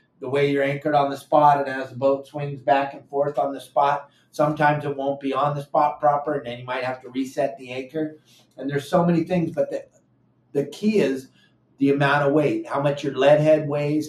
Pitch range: 130-155 Hz